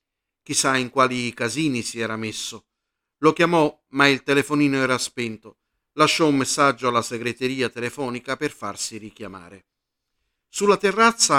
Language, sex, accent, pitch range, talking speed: Italian, male, native, 110-140 Hz, 130 wpm